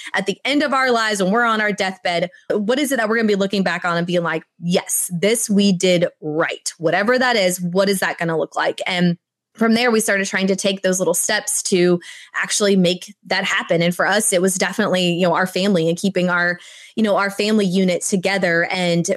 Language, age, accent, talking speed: English, 20-39, American, 240 wpm